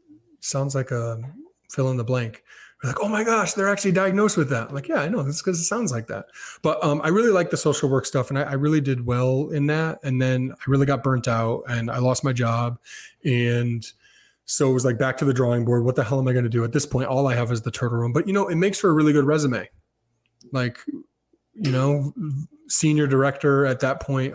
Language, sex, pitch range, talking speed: English, male, 125-160 Hz, 255 wpm